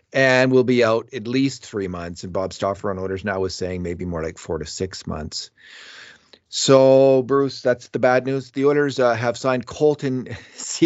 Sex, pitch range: male, 95-135 Hz